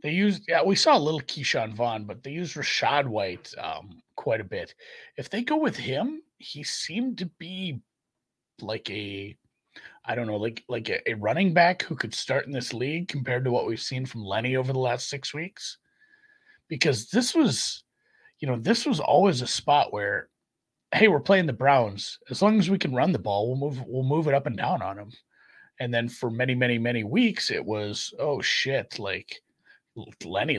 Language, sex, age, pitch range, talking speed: English, male, 30-49, 115-180 Hz, 200 wpm